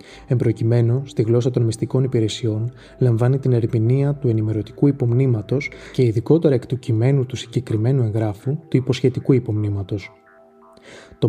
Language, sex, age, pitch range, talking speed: Greek, male, 20-39, 115-130 Hz, 130 wpm